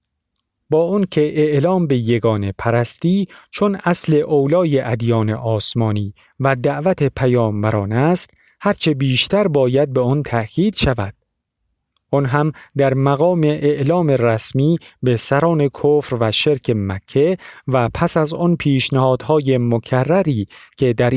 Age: 50-69